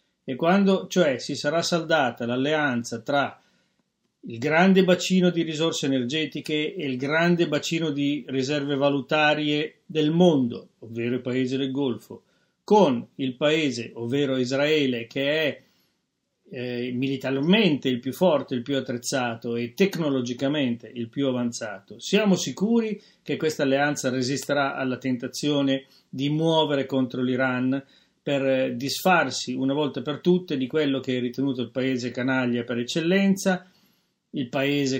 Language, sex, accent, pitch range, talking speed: Italian, male, native, 125-155 Hz, 135 wpm